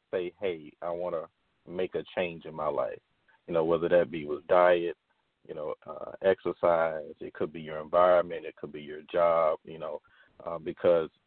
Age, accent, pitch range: 40-59, American, 85-115 Hz